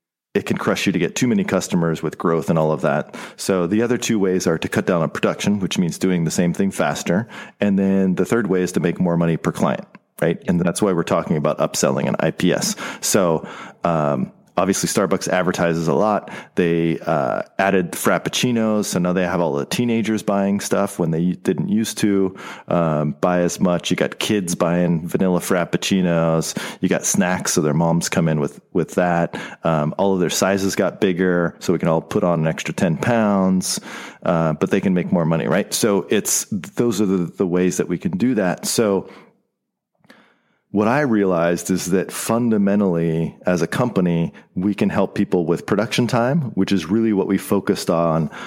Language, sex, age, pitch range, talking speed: English, male, 30-49, 85-100 Hz, 200 wpm